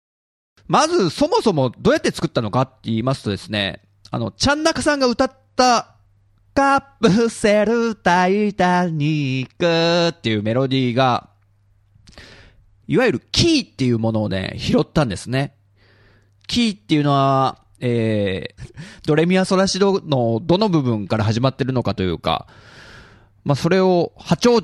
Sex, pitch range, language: male, 105-170 Hz, Japanese